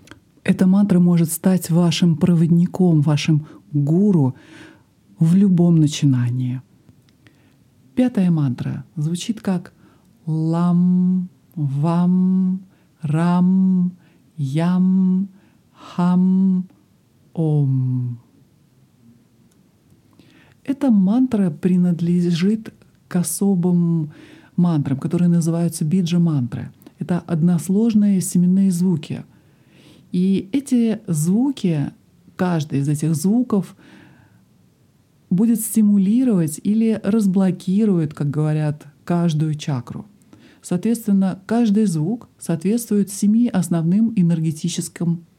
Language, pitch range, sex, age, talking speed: Russian, 150-190 Hz, male, 50-69, 75 wpm